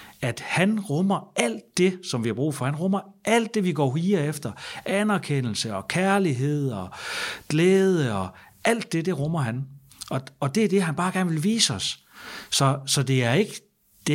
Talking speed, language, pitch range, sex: 195 wpm, Danish, 115-155 Hz, male